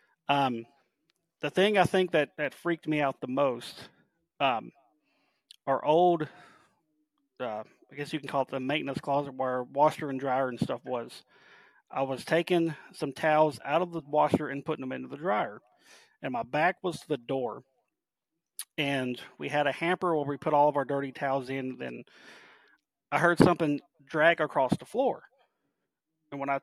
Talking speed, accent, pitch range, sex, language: 180 wpm, American, 140-175 Hz, male, English